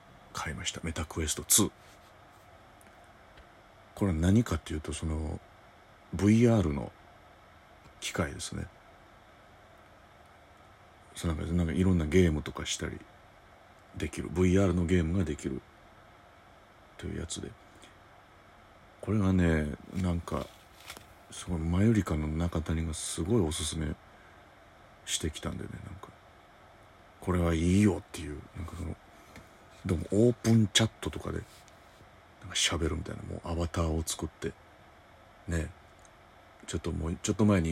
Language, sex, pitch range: Japanese, male, 80-95 Hz